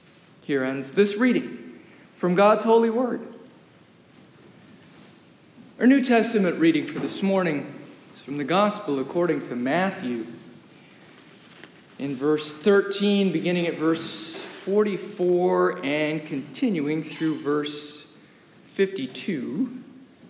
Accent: American